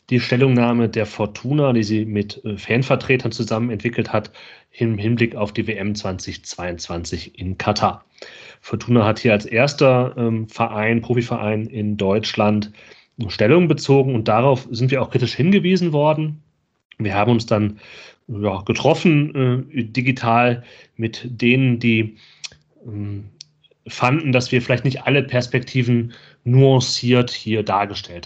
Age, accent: 30-49, German